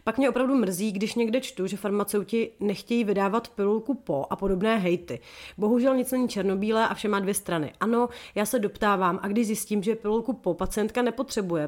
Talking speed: 190 wpm